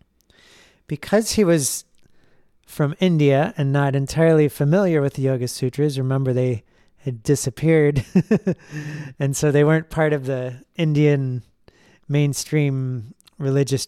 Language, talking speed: English, 115 wpm